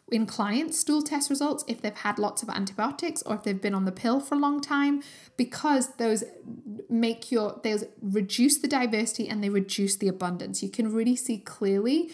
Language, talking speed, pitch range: English, 200 wpm, 195-250 Hz